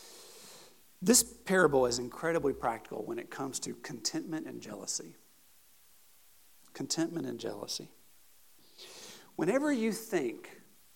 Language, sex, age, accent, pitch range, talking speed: English, male, 50-69, American, 160-235 Hz, 100 wpm